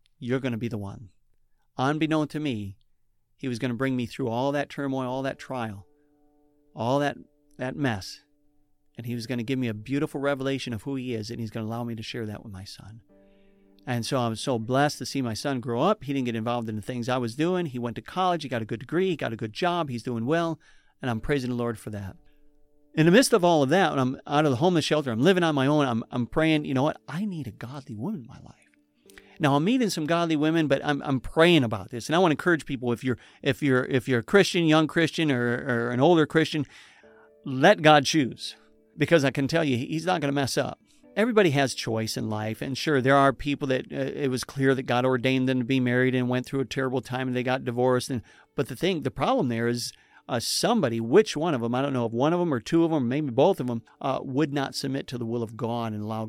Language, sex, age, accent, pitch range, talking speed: English, male, 50-69, American, 120-150 Hz, 265 wpm